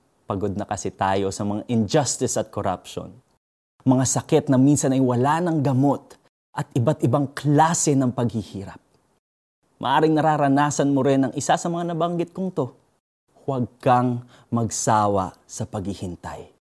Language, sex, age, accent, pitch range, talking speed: Filipino, male, 20-39, native, 105-140 Hz, 140 wpm